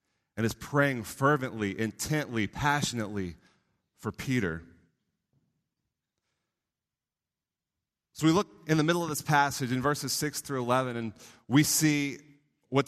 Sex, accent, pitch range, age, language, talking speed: male, American, 115-150 Hz, 30-49, English, 120 wpm